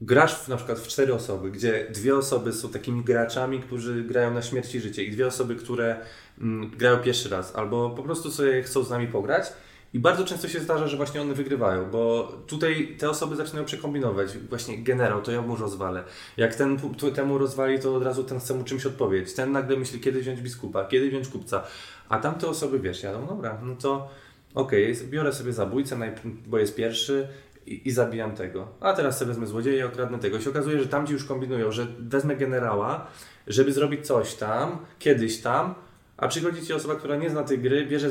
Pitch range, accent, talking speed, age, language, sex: 115-140 Hz, native, 210 wpm, 20-39, Polish, male